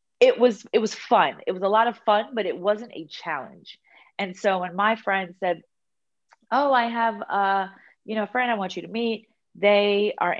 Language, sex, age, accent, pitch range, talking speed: English, female, 30-49, American, 180-245 Hz, 215 wpm